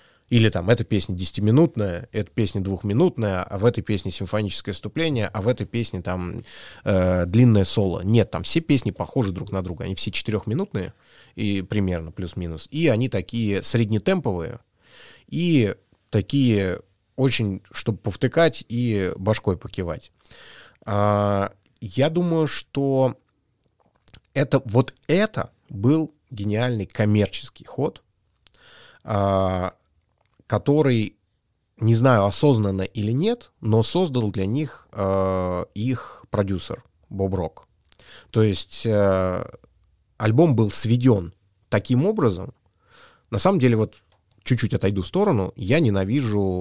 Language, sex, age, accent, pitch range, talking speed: Russian, male, 30-49, native, 95-125 Hz, 120 wpm